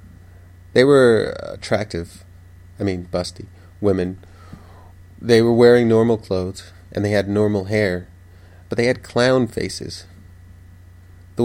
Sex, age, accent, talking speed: male, 30-49, American, 120 wpm